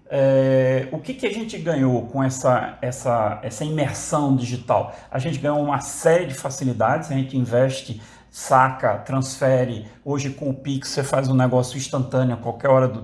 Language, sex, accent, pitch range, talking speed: Portuguese, male, Brazilian, 130-175 Hz, 175 wpm